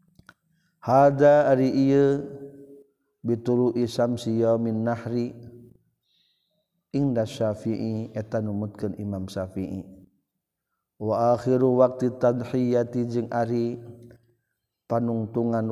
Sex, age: male, 50-69